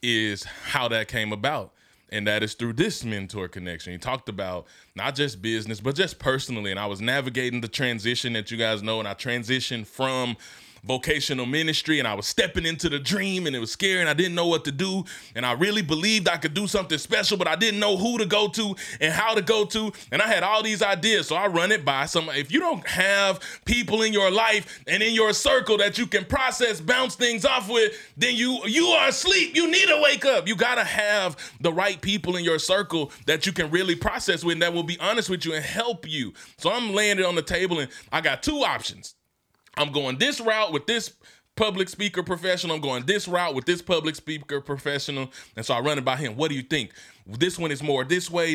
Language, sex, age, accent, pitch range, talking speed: English, male, 20-39, American, 125-205 Hz, 235 wpm